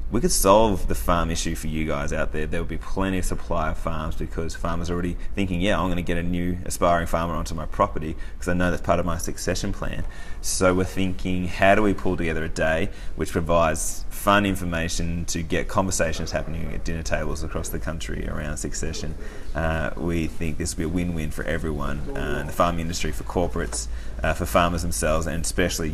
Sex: male